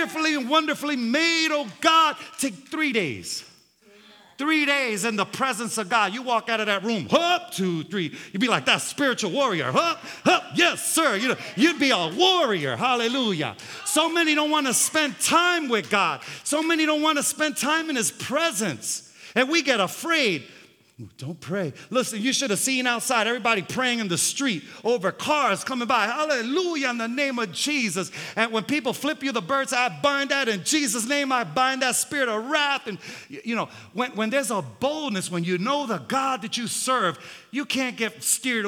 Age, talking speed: 40-59, 195 wpm